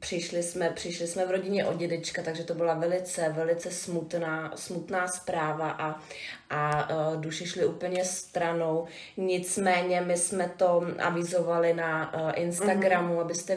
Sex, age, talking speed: female, 30-49, 130 wpm